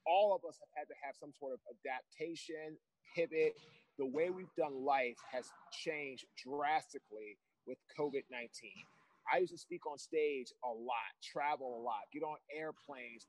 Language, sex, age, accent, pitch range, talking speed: English, male, 30-49, American, 145-245 Hz, 165 wpm